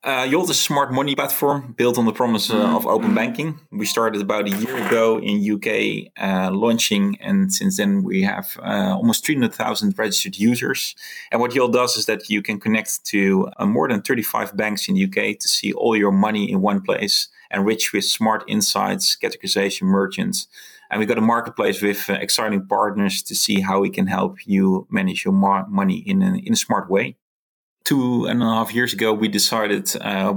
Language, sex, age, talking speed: English, male, 30-49, 195 wpm